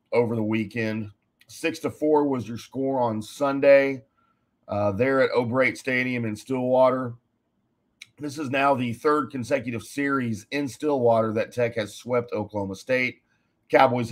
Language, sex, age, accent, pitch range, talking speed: English, male, 40-59, American, 105-130 Hz, 145 wpm